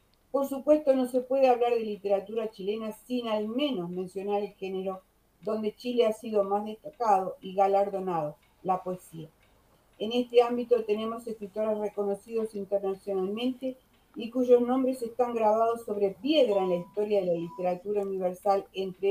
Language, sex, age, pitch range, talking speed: Spanish, female, 40-59, 195-235 Hz, 150 wpm